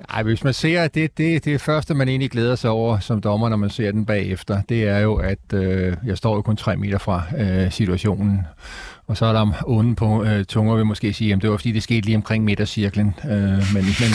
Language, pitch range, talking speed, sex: Danish, 100-115 Hz, 245 wpm, male